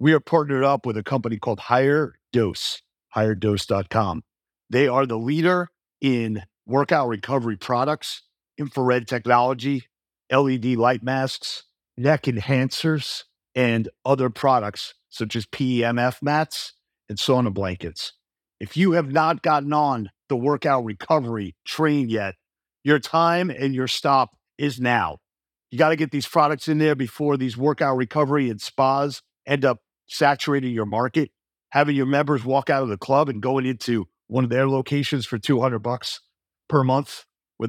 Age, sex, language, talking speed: 50-69, male, English, 150 wpm